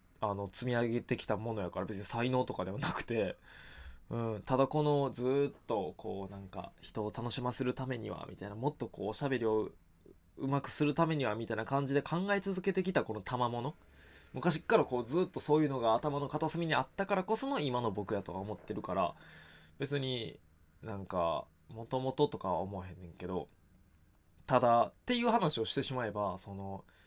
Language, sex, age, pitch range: Japanese, male, 20-39, 95-140 Hz